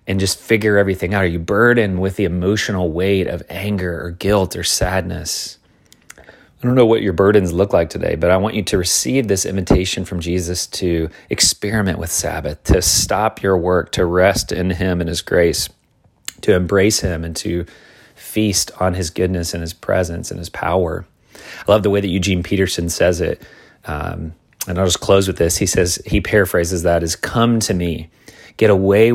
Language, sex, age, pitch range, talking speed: English, male, 30-49, 85-100 Hz, 190 wpm